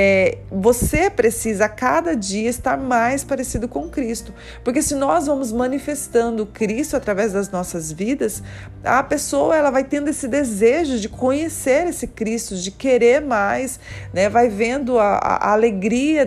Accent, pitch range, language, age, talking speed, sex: Brazilian, 210-260 Hz, Portuguese, 40-59, 140 wpm, female